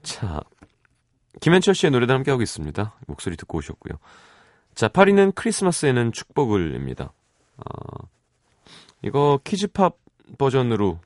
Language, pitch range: Korean, 90-140 Hz